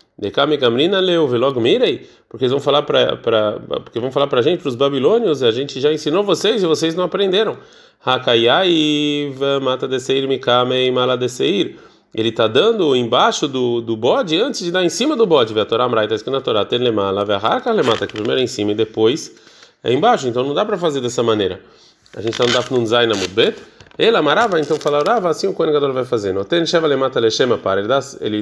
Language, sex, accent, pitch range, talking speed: Portuguese, male, Brazilian, 120-160 Hz, 190 wpm